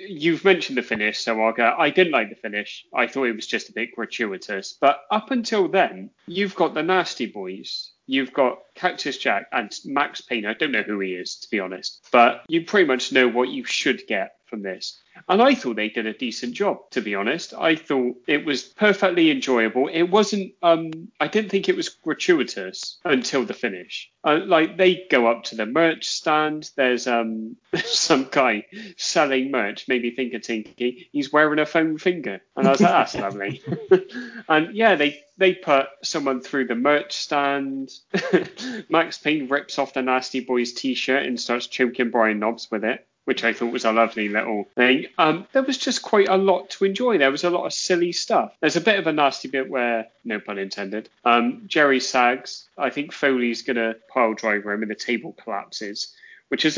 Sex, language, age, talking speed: male, English, 30-49, 205 wpm